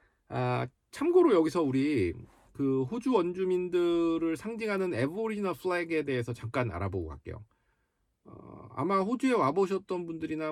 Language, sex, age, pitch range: Korean, male, 40-59, 110-175 Hz